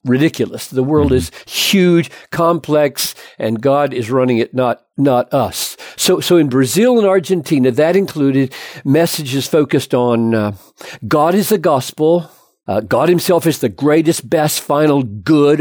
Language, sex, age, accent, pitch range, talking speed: English, male, 50-69, American, 120-155 Hz, 150 wpm